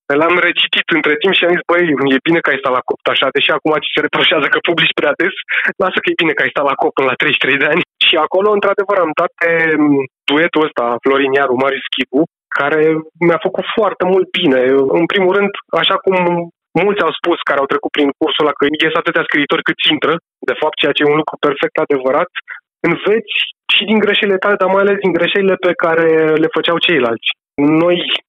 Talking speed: 215 wpm